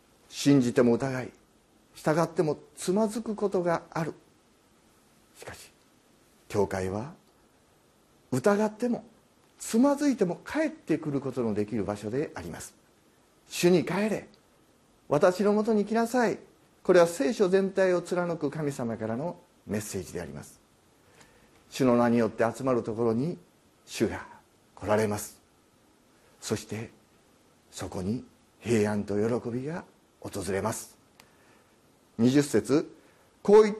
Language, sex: Japanese, male